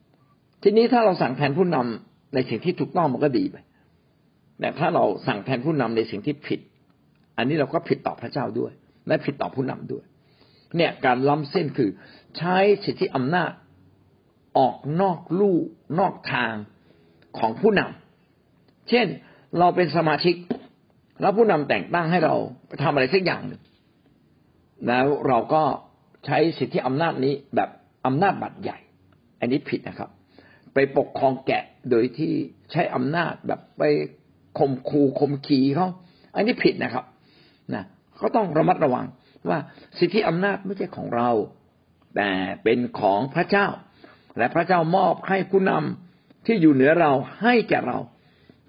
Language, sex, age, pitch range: Thai, male, 60-79, 135-185 Hz